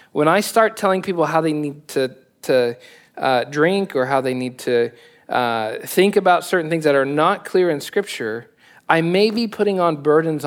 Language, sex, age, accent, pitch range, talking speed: English, male, 40-59, American, 150-225 Hz, 195 wpm